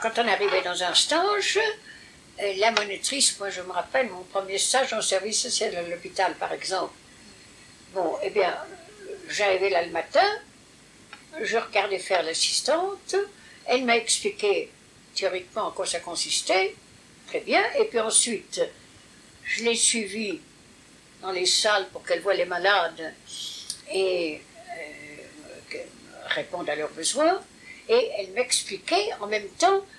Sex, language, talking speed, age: female, English, 140 wpm, 60-79